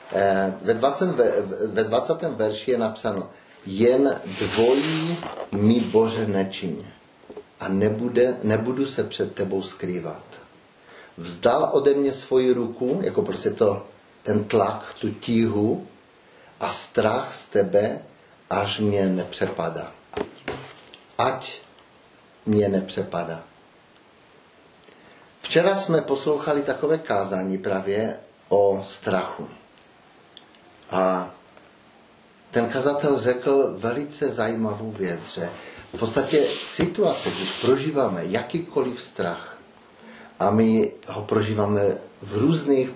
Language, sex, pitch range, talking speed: Czech, male, 100-130 Hz, 95 wpm